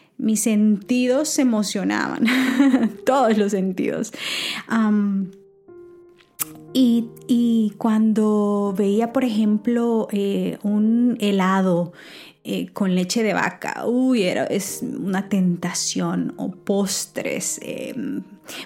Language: Spanish